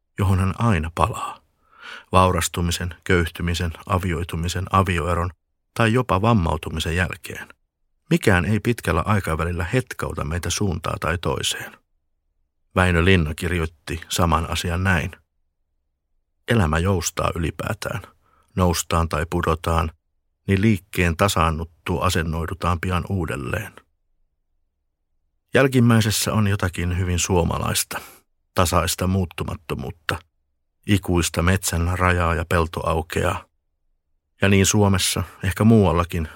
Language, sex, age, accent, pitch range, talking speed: Finnish, male, 50-69, native, 80-100 Hz, 90 wpm